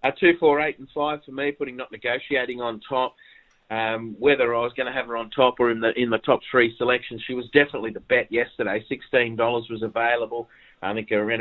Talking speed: 230 wpm